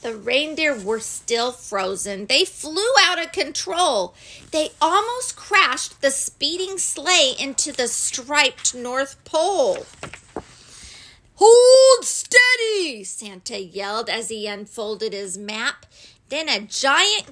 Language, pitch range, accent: English, 225-335 Hz, American